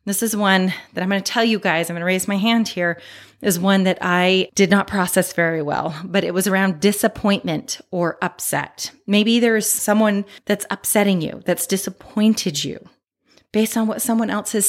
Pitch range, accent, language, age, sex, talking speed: 180-220 Hz, American, English, 30-49, female, 195 wpm